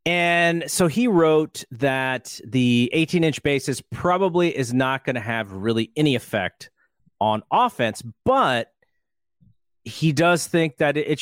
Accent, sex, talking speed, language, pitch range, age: American, male, 140 wpm, English, 110-155 Hz, 30-49